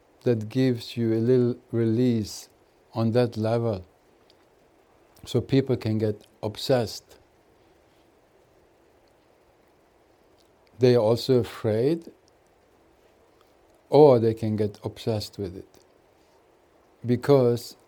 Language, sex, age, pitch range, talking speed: English, male, 60-79, 105-130 Hz, 85 wpm